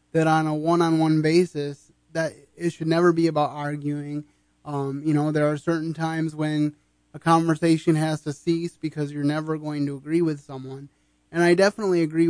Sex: male